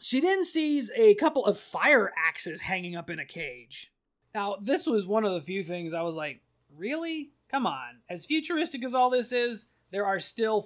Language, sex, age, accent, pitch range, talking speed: English, male, 30-49, American, 170-220 Hz, 205 wpm